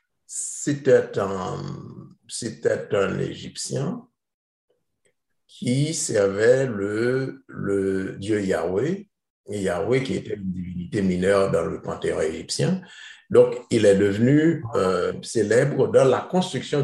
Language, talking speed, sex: French, 105 wpm, male